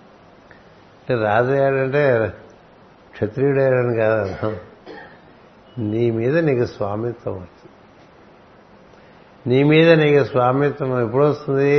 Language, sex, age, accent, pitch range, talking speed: Telugu, male, 60-79, native, 115-135 Hz, 70 wpm